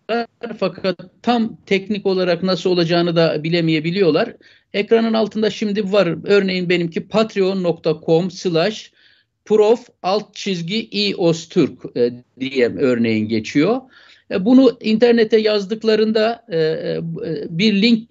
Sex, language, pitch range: male, Turkish, 170-230 Hz